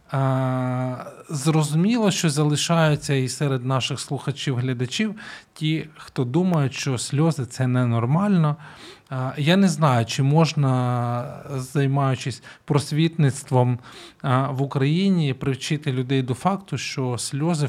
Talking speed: 105 wpm